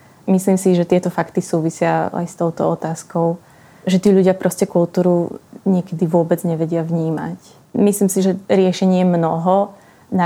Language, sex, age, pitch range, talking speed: Slovak, female, 20-39, 175-190 Hz, 150 wpm